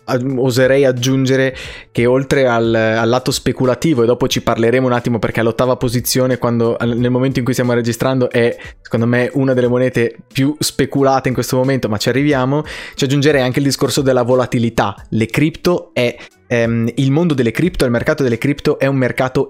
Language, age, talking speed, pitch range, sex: Italian, 20-39, 180 wpm, 125-140 Hz, male